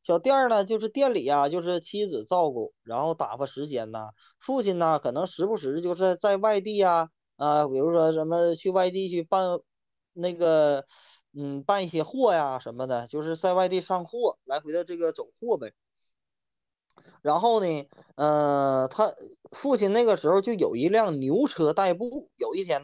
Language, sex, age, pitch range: Chinese, male, 20-39, 135-200 Hz